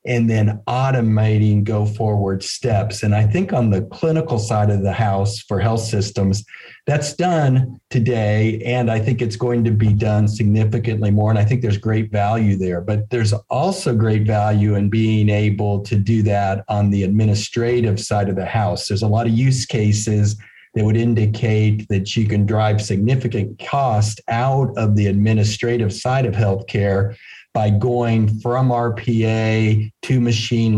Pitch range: 105-120 Hz